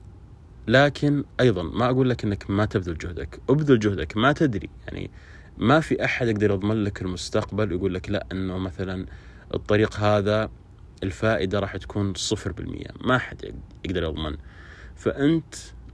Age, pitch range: 30-49, 90-110 Hz